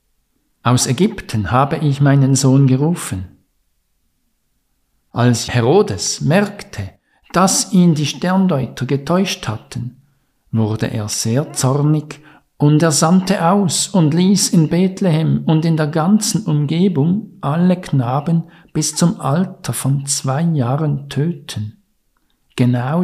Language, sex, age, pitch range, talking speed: German, male, 50-69, 125-155 Hz, 110 wpm